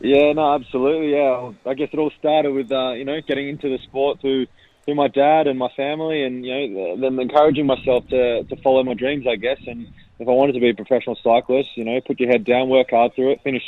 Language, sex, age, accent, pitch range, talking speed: English, male, 20-39, Australian, 125-140 Hz, 250 wpm